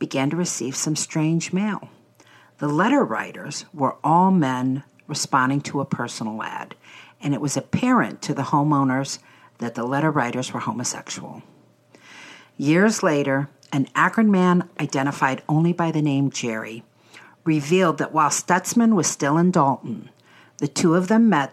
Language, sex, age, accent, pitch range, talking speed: English, female, 50-69, American, 130-175 Hz, 150 wpm